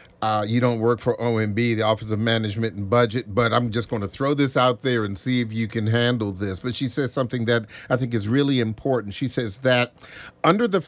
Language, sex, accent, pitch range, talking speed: English, male, American, 110-140 Hz, 235 wpm